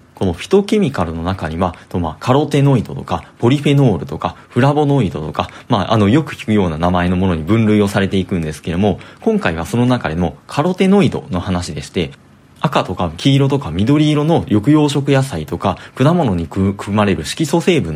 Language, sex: Japanese, male